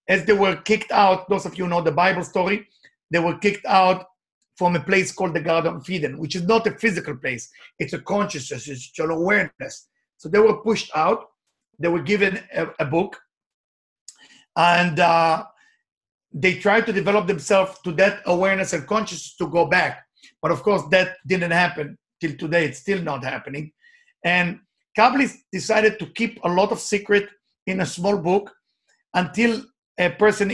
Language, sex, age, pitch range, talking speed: English, male, 50-69, 175-215 Hz, 175 wpm